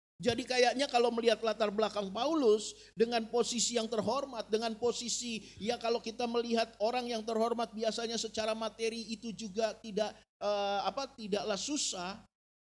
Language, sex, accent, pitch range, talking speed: Indonesian, male, native, 165-235 Hz, 140 wpm